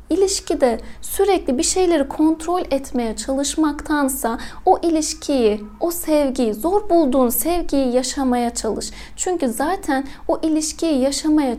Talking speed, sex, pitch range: 110 wpm, female, 255-310 Hz